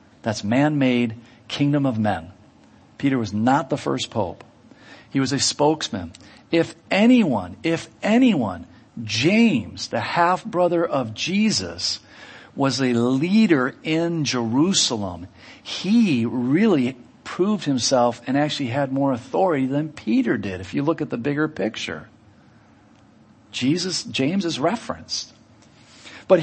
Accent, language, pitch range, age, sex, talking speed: American, English, 120-170 Hz, 50-69, male, 120 wpm